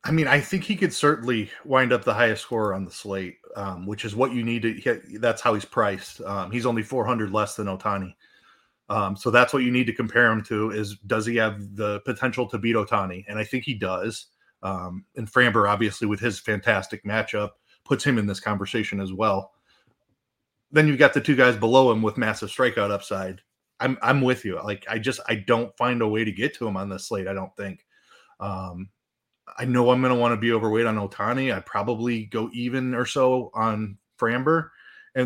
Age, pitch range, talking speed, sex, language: 30-49, 105-130 Hz, 220 wpm, male, English